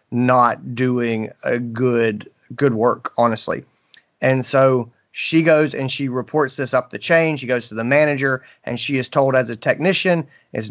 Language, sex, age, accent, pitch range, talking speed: English, male, 30-49, American, 115-140 Hz, 175 wpm